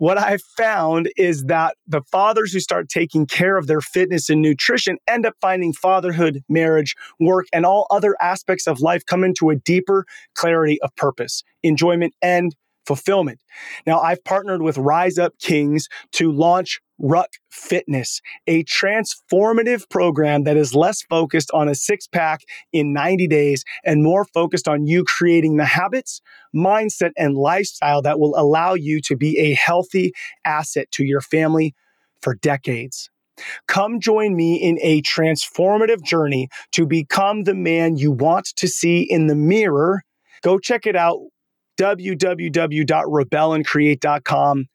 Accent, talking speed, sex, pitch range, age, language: American, 150 wpm, male, 150-185 Hz, 30-49, English